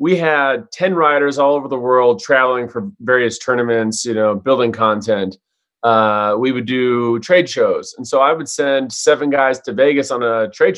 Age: 30-49